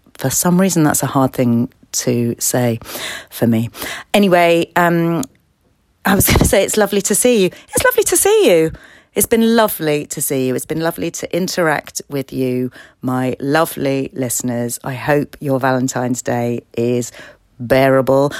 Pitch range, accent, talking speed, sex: 125-170 Hz, British, 185 wpm, female